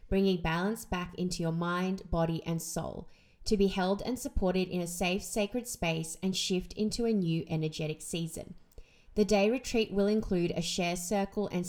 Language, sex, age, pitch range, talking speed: English, female, 20-39, 175-210 Hz, 180 wpm